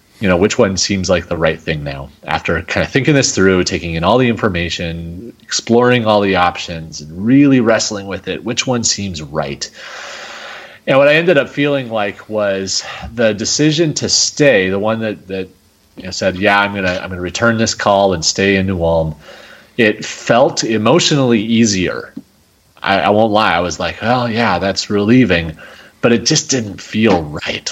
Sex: male